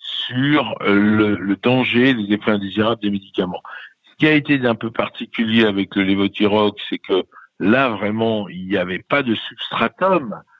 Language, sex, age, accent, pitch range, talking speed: French, male, 60-79, French, 100-125 Hz, 165 wpm